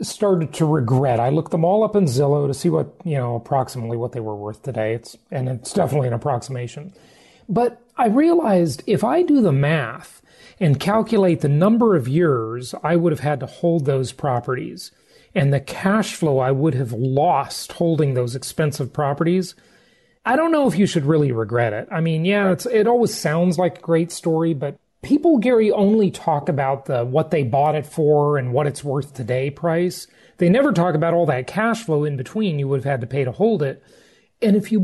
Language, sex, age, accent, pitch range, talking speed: English, male, 40-59, American, 135-190 Hz, 210 wpm